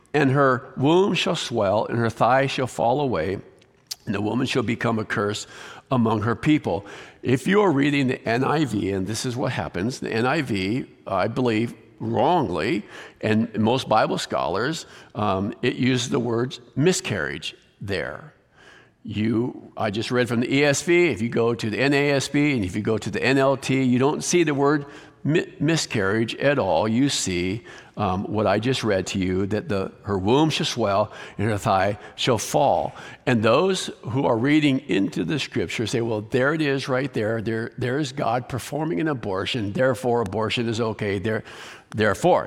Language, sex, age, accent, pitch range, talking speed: English, male, 50-69, American, 110-140 Hz, 175 wpm